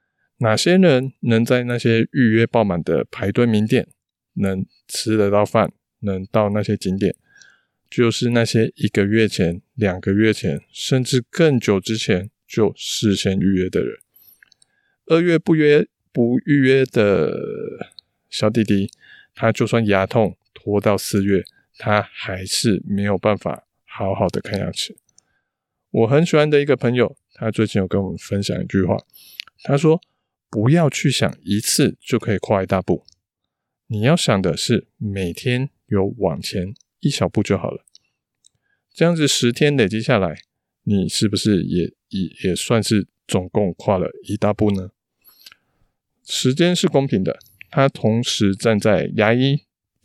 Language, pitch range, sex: Chinese, 100-125 Hz, male